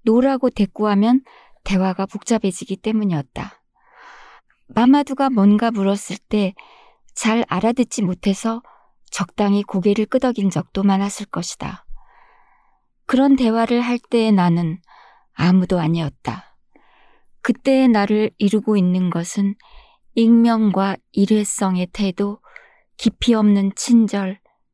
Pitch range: 190-240 Hz